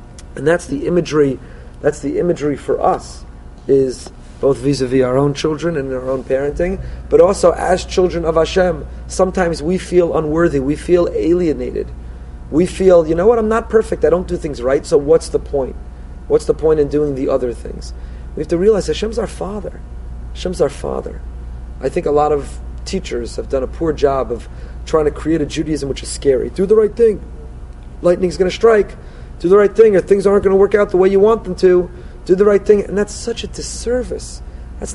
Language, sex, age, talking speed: English, male, 30-49, 210 wpm